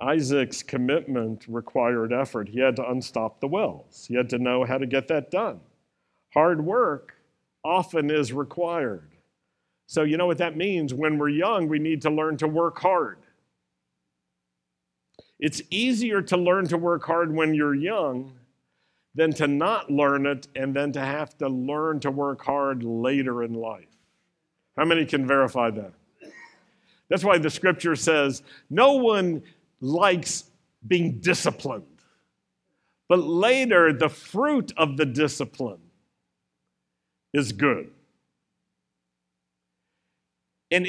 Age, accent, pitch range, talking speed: 50-69, American, 120-165 Hz, 135 wpm